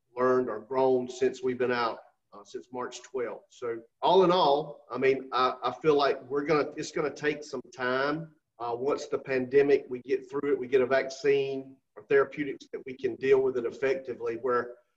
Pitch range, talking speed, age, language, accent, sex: 130-185 Hz, 200 wpm, 40-59, English, American, male